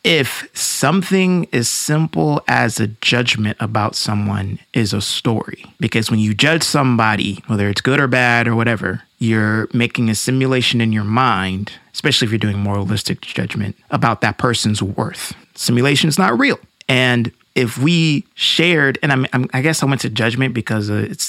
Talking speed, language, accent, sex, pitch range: 165 wpm, English, American, male, 110-130 Hz